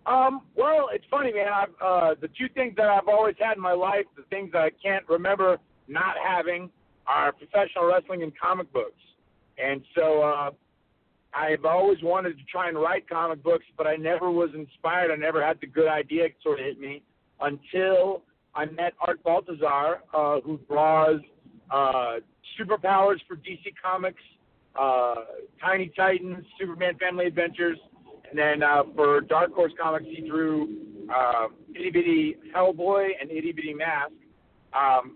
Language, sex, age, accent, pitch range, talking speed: English, male, 50-69, American, 155-190 Hz, 165 wpm